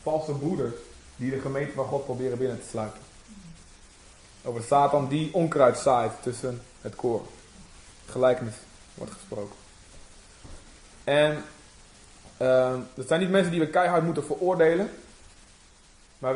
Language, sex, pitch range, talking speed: Dutch, male, 115-155 Hz, 125 wpm